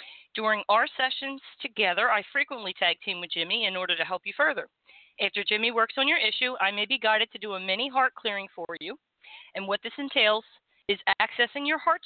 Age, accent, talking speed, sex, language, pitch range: 40-59, American, 210 wpm, female, English, 175-225 Hz